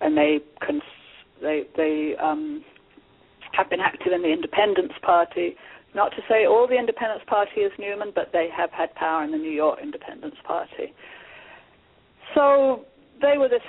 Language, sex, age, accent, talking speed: English, female, 50-69, British, 160 wpm